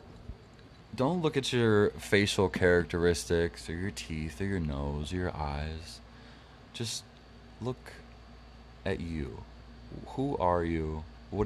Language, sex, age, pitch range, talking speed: English, male, 20-39, 85-115 Hz, 120 wpm